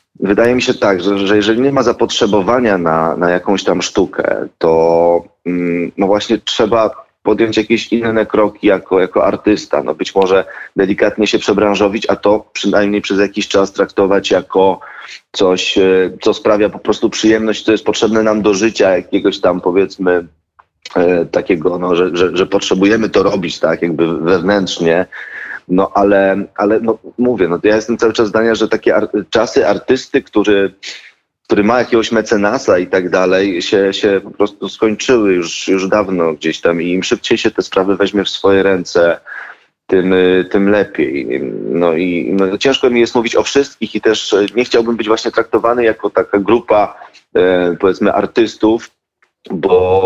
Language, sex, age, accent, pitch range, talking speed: Polish, male, 30-49, native, 95-115 Hz, 160 wpm